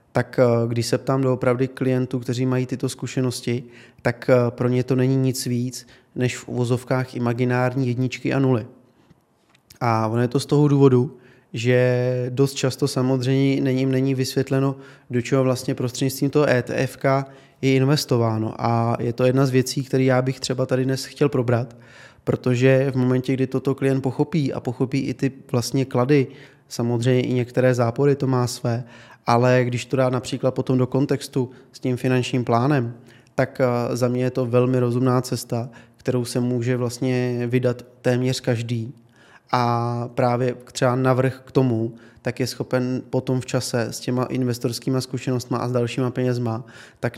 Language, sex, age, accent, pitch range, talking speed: Czech, male, 20-39, native, 120-130 Hz, 165 wpm